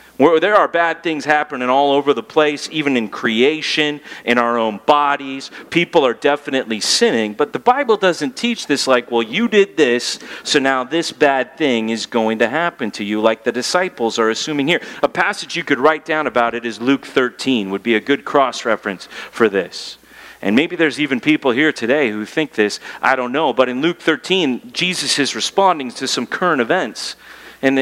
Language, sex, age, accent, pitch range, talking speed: English, male, 40-59, American, 125-170 Hz, 200 wpm